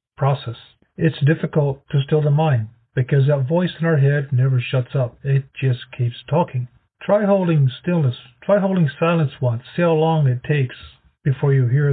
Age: 40-59